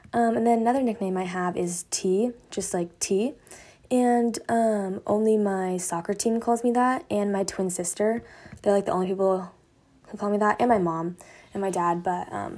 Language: English